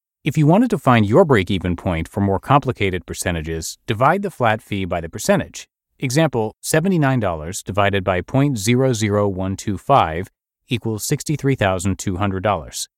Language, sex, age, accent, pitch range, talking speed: English, male, 30-49, American, 95-130 Hz, 115 wpm